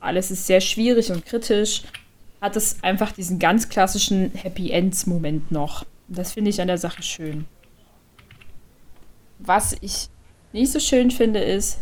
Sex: female